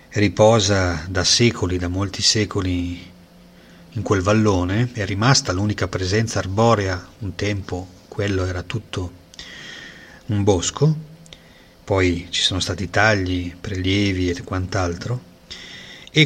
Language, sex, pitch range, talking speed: Italian, male, 90-110 Hz, 110 wpm